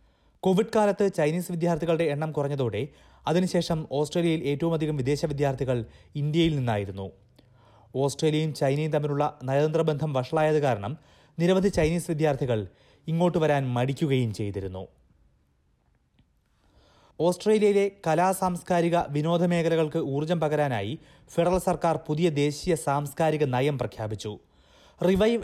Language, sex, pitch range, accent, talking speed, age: Malayalam, male, 130-170 Hz, native, 95 wpm, 30-49